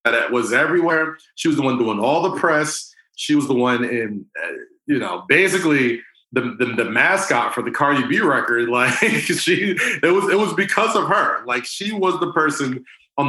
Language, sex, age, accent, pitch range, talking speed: English, male, 30-49, American, 120-175 Hz, 195 wpm